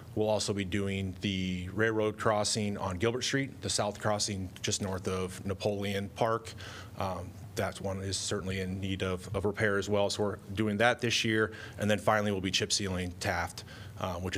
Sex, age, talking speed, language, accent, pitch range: male, 30-49, 190 wpm, English, American, 95-110 Hz